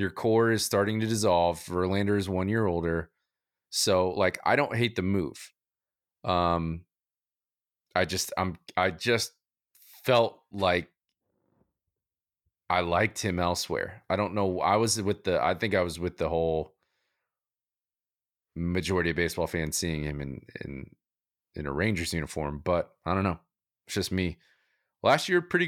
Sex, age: male, 30-49